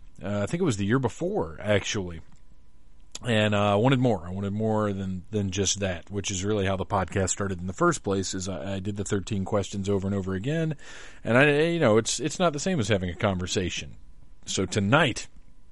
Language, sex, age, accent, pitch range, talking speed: English, male, 40-59, American, 100-125 Hz, 220 wpm